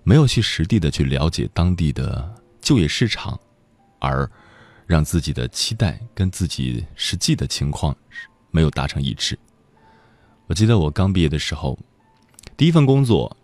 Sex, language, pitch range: male, Chinese, 75-110 Hz